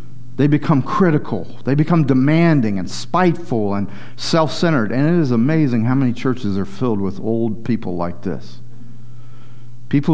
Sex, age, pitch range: male, 50-69, 120-150 Hz